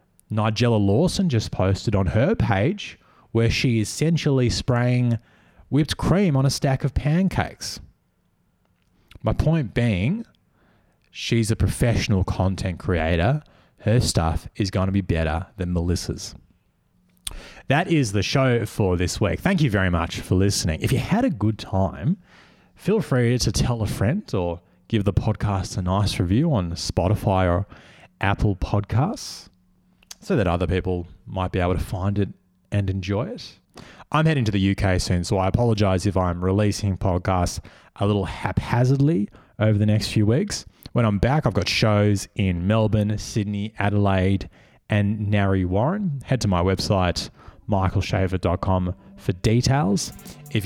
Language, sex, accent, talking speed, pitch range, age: English, male, Australian, 150 wpm, 95-120 Hz, 30-49